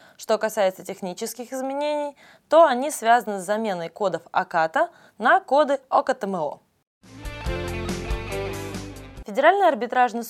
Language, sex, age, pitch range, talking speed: Russian, female, 20-39, 180-250 Hz, 95 wpm